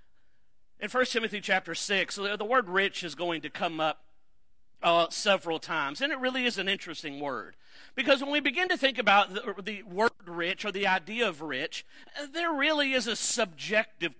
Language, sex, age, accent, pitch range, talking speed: English, male, 50-69, American, 195-270 Hz, 185 wpm